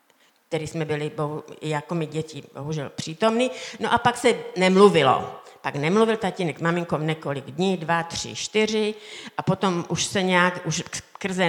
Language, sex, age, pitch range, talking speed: Czech, female, 50-69, 160-205 Hz, 150 wpm